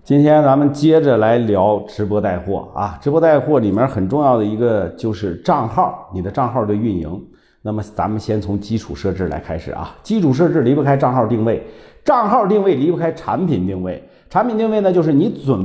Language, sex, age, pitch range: Chinese, male, 50-69, 110-180 Hz